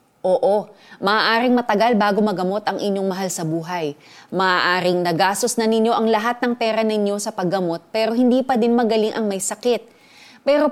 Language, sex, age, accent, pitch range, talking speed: Filipino, female, 30-49, native, 170-220 Hz, 170 wpm